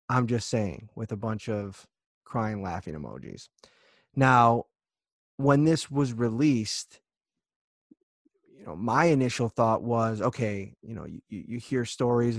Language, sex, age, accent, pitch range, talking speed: English, male, 30-49, American, 105-120 Hz, 135 wpm